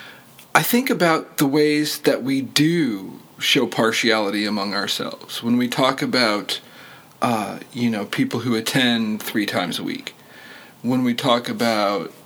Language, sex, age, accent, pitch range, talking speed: English, male, 40-59, American, 115-150 Hz, 145 wpm